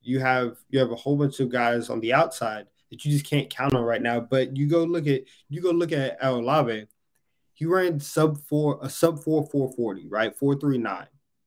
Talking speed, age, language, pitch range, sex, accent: 225 wpm, 20-39, English, 120-145 Hz, male, American